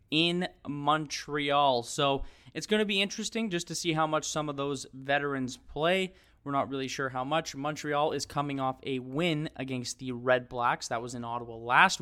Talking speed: 195 wpm